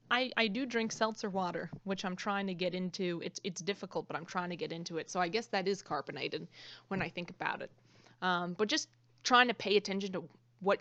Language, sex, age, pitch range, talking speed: English, female, 20-39, 175-210 Hz, 235 wpm